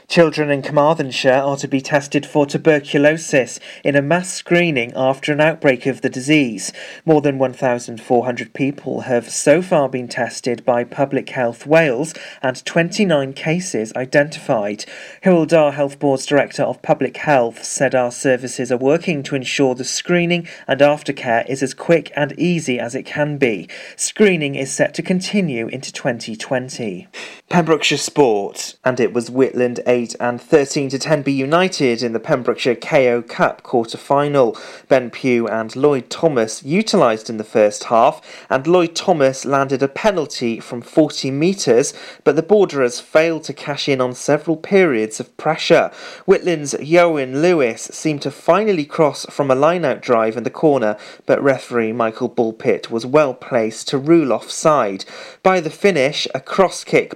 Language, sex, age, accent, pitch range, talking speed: English, male, 40-59, British, 125-160 Hz, 155 wpm